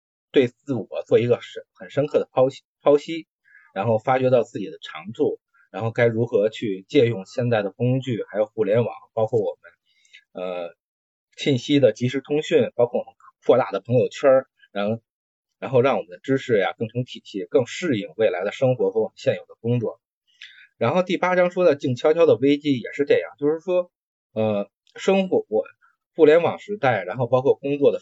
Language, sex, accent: Chinese, male, native